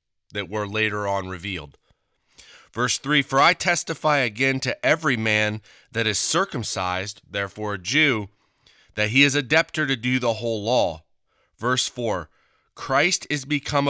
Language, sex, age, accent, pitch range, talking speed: English, male, 30-49, American, 110-150 Hz, 150 wpm